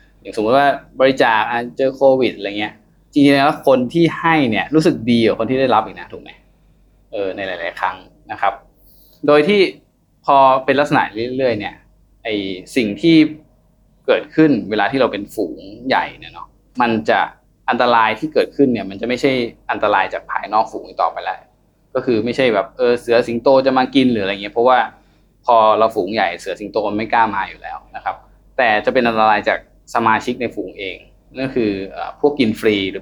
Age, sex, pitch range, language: 20-39, male, 115-150 Hz, Thai